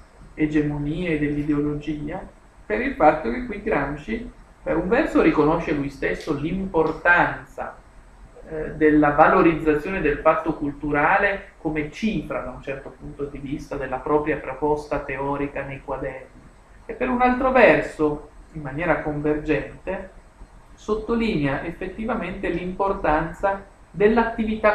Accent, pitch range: native, 145-180 Hz